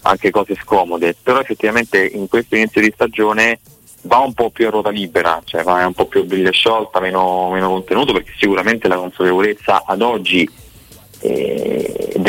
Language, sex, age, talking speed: Italian, male, 20-39, 160 wpm